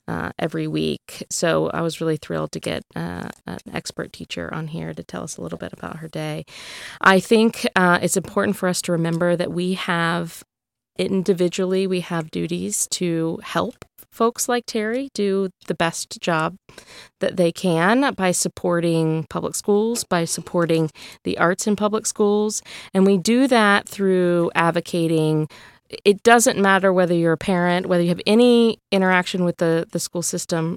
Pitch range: 165-195 Hz